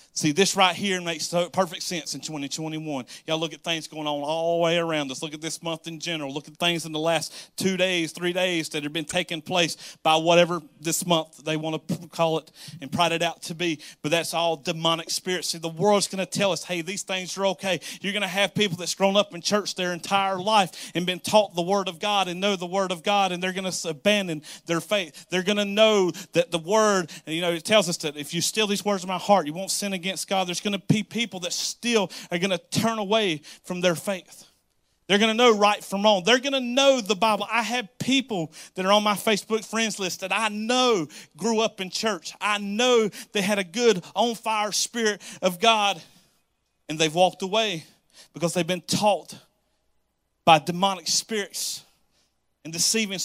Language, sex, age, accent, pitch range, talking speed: English, male, 40-59, American, 165-205 Hz, 225 wpm